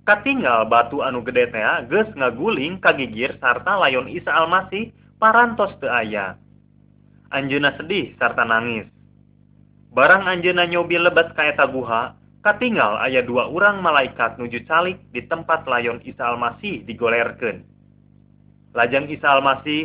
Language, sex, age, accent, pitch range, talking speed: Indonesian, male, 20-39, native, 120-175 Hz, 120 wpm